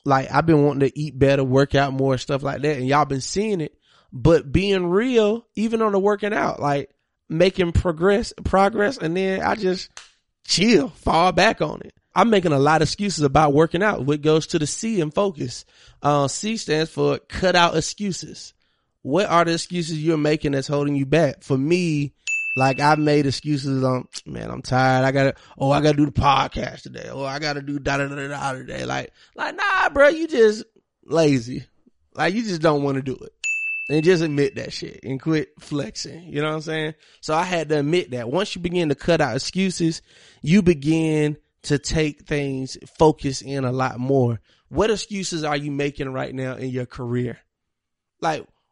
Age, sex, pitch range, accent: 20-39, male, 135-175 Hz, American